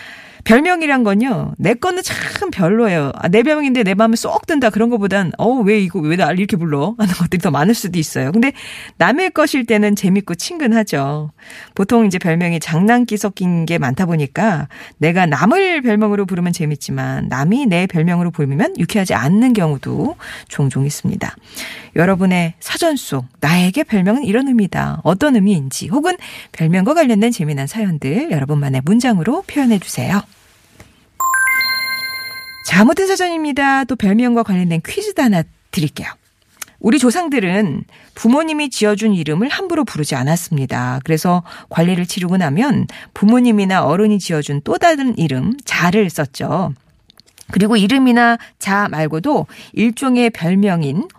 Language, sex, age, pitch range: Korean, female, 40-59, 170-245 Hz